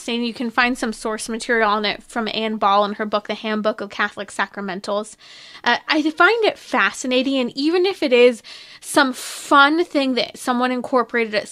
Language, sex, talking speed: English, female, 195 wpm